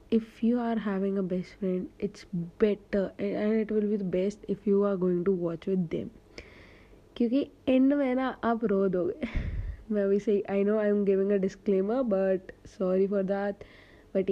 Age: 30-49